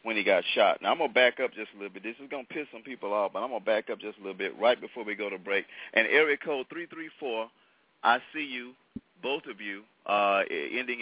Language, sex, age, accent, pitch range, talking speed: English, male, 40-59, American, 105-165 Hz, 270 wpm